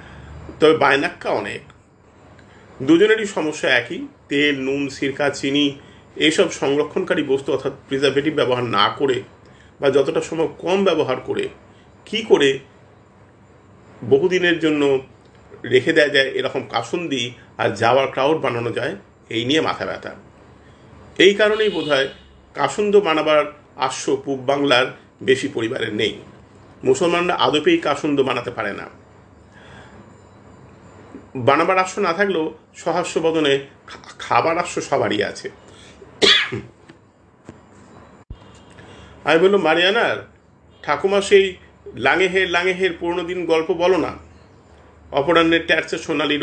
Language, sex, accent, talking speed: Hindi, male, native, 95 wpm